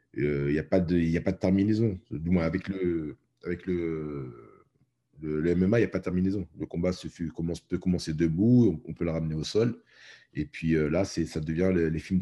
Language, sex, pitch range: French, male, 75-95 Hz